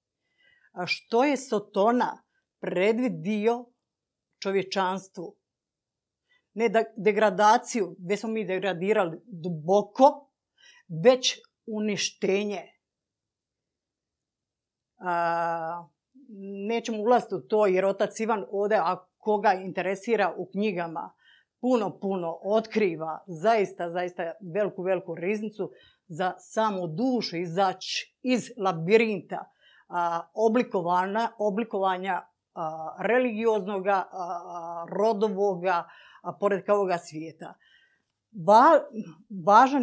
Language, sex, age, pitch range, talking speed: Croatian, female, 50-69, 175-225 Hz, 80 wpm